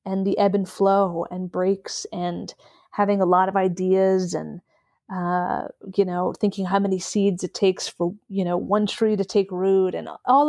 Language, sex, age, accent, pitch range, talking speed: English, female, 30-49, American, 185-215 Hz, 190 wpm